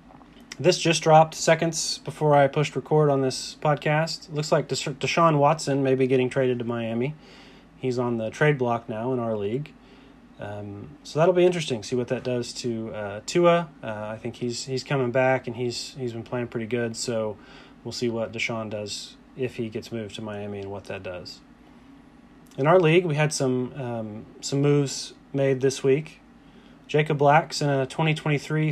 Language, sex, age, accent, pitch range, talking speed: English, male, 30-49, American, 115-145 Hz, 190 wpm